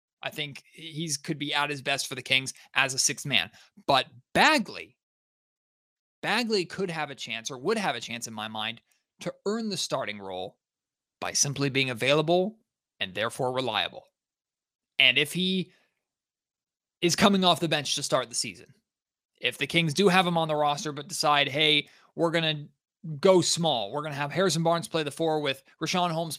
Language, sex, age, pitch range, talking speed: English, male, 20-39, 145-195 Hz, 190 wpm